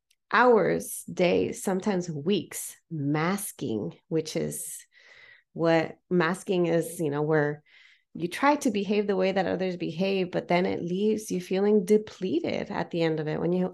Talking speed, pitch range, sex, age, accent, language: 155 wpm, 155-195 Hz, female, 30-49, American, English